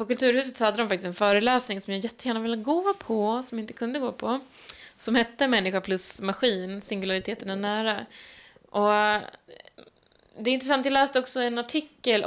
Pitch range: 190-235 Hz